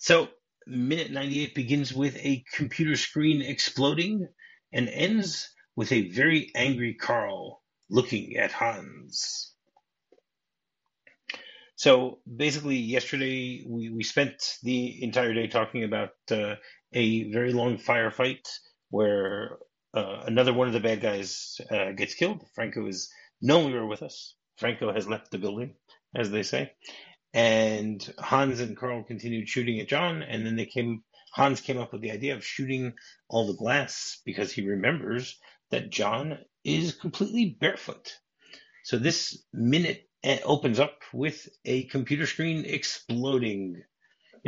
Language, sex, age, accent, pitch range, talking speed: English, male, 30-49, American, 110-140 Hz, 140 wpm